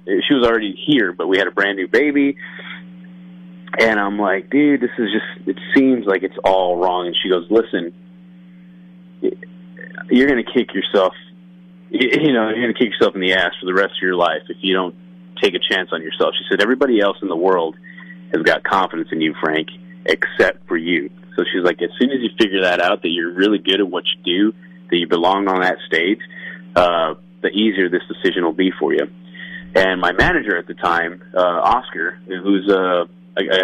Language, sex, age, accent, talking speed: English, male, 30-49, American, 205 wpm